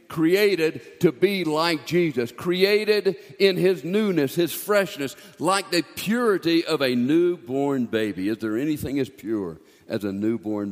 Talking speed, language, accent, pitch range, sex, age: 145 wpm, English, American, 115-175 Hz, male, 50-69